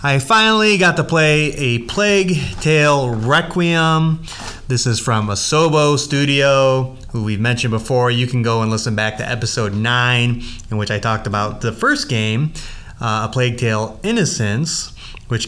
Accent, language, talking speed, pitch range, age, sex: American, English, 160 wpm, 110-130 Hz, 30-49, male